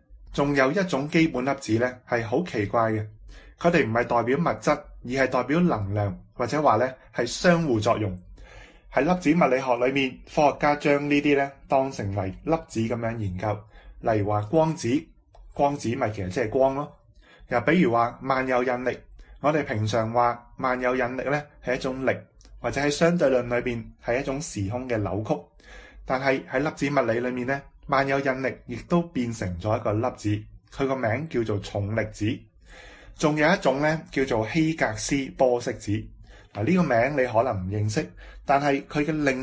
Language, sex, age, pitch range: Chinese, male, 20-39, 110-140 Hz